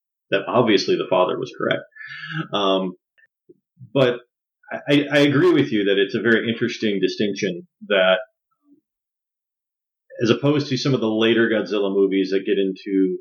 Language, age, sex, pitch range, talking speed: English, 30-49, male, 100-145 Hz, 145 wpm